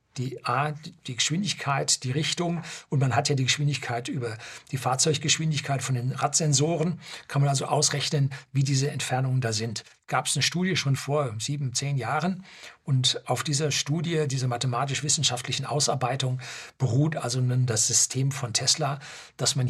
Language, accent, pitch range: German, German, 125-150 Hz